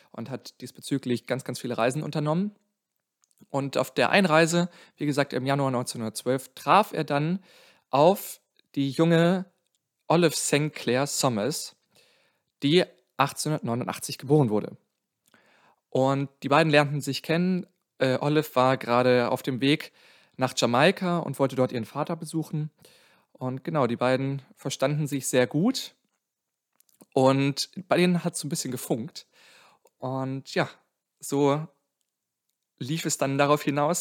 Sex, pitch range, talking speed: male, 130-165 Hz, 135 wpm